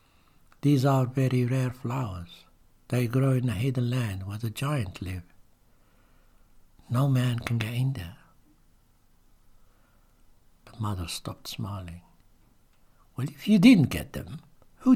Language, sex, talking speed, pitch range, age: English, male, 130 wpm, 100-140 Hz, 60-79